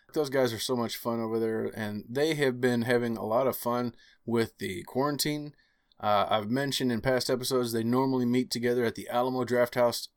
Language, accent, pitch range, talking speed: English, American, 110-130 Hz, 200 wpm